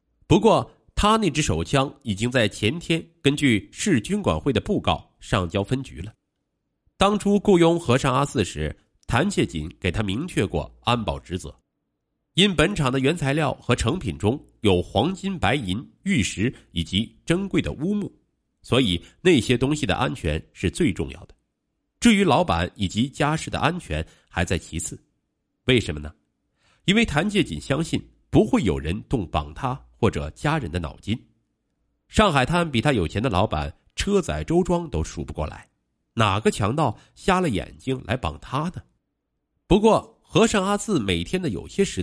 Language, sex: Chinese, male